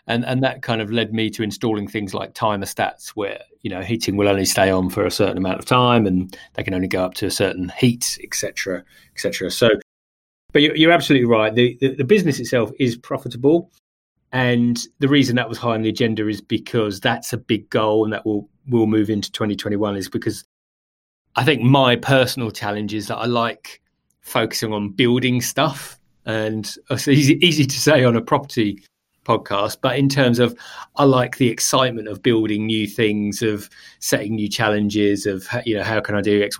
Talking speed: 205 wpm